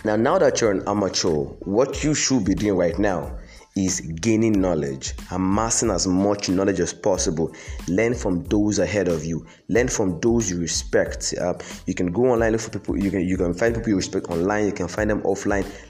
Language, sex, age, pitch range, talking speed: English, male, 20-39, 90-115 Hz, 210 wpm